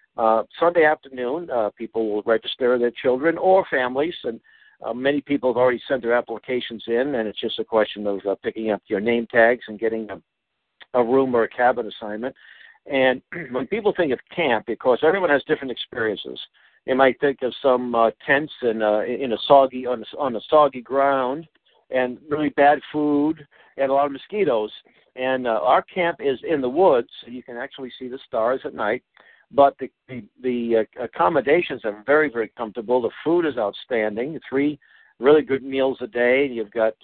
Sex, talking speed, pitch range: male, 195 wpm, 115-135 Hz